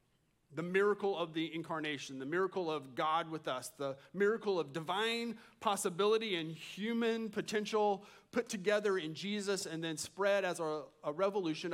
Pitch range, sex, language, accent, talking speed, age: 155-205 Hz, male, English, American, 155 wpm, 30-49